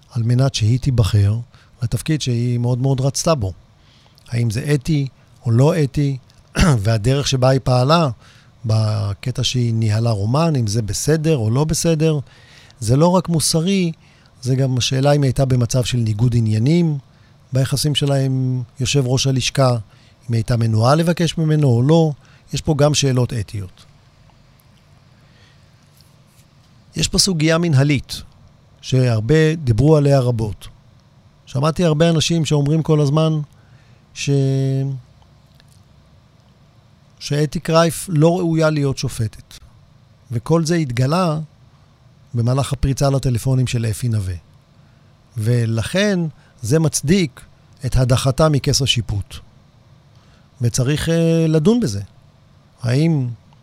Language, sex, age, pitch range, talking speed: Hebrew, male, 50-69, 120-150 Hz, 115 wpm